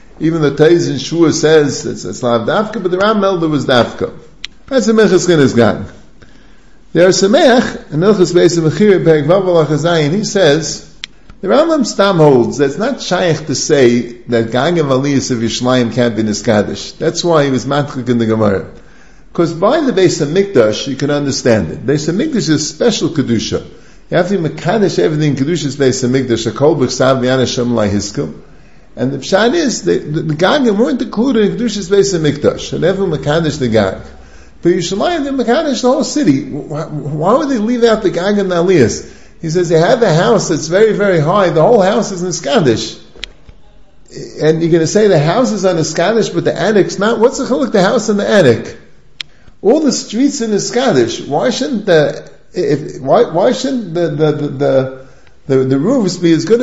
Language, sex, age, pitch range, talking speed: English, male, 50-69, 135-210 Hz, 190 wpm